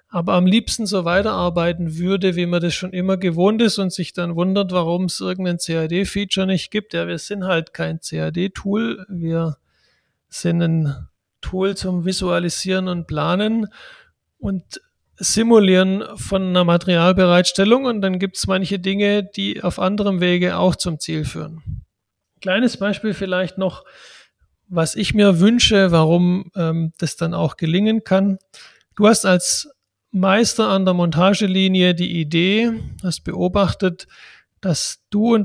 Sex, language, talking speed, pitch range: male, German, 145 wpm, 165-195 Hz